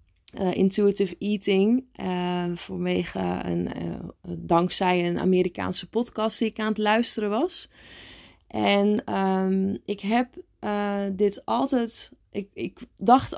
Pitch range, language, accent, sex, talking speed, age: 195-225 Hz, Dutch, Dutch, female, 110 wpm, 20-39